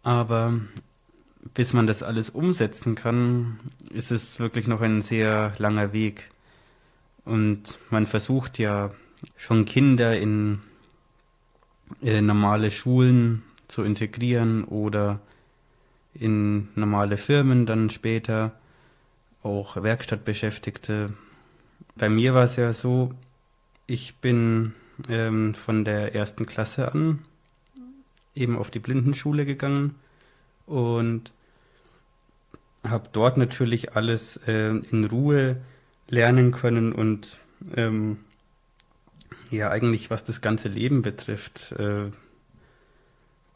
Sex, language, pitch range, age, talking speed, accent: male, German, 105-125 Hz, 20-39, 100 wpm, German